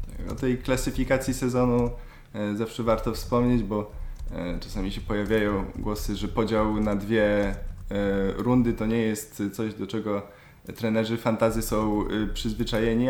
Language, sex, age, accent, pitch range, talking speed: Polish, male, 20-39, native, 105-120 Hz, 125 wpm